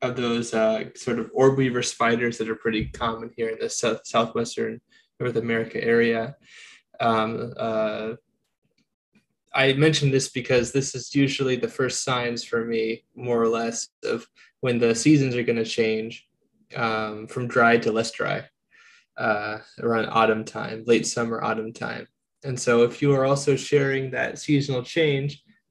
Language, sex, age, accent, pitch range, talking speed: English, male, 20-39, American, 115-130 Hz, 160 wpm